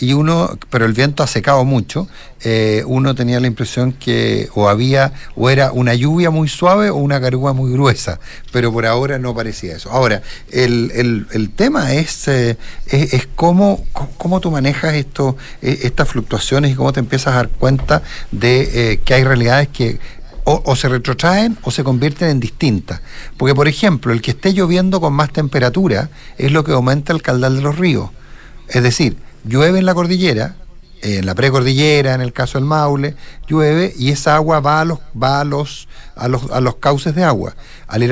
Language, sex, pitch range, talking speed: Spanish, male, 125-155 Hz, 195 wpm